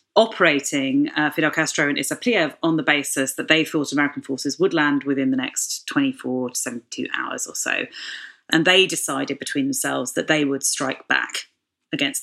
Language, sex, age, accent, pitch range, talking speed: English, female, 30-49, British, 145-215 Hz, 175 wpm